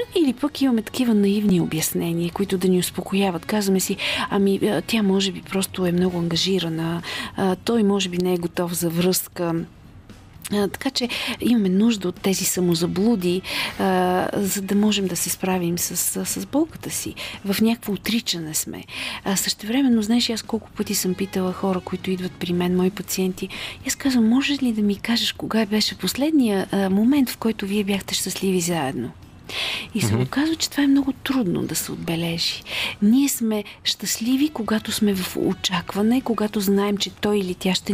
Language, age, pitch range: Bulgarian, 40-59, 185-235 Hz